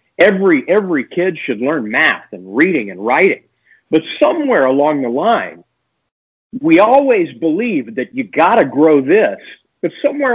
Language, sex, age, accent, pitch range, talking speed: English, male, 50-69, American, 160-225 Hz, 150 wpm